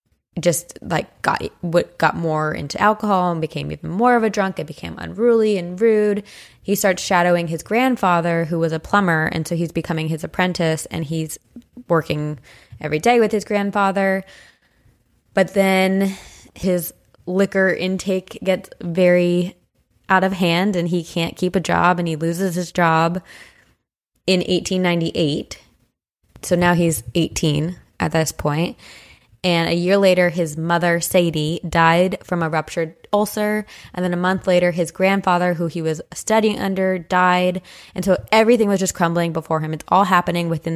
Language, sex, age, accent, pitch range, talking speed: English, female, 20-39, American, 160-190 Hz, 165 wpm